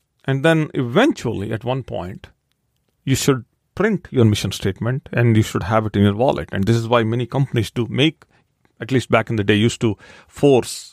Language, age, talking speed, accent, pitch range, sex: English, 40-59, 205 wpm, Indian, 110-140 Hz, male